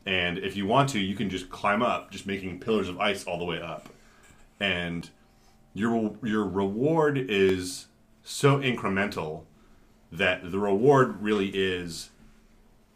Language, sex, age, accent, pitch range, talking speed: English, male, 30-49, American, 85-100 Hz, 145 wpm